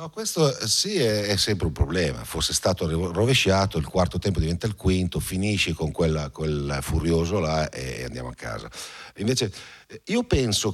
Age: 50-69